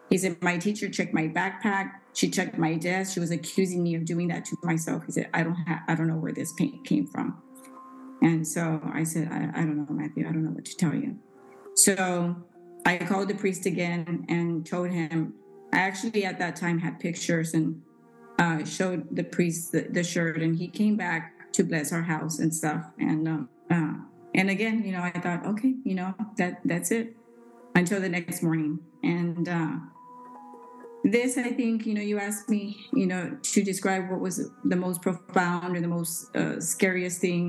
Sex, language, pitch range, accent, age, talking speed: female, English, 165-195 Hz, American, 30-49, 205 wpm